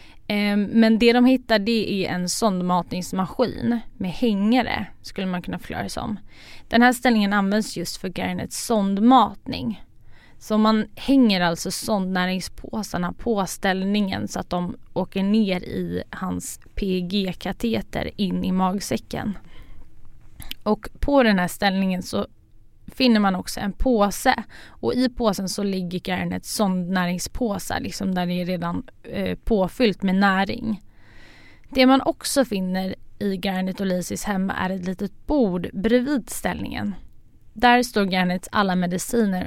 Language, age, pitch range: Swedish, 20-39, 180-225 Hz